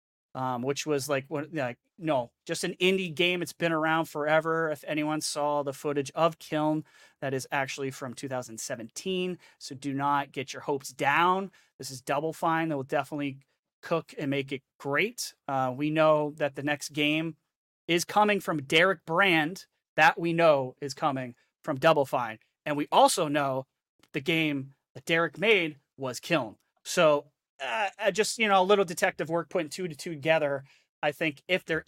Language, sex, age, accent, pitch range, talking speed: English, male, 30-49, American, 140-170 Hz, 175 wpm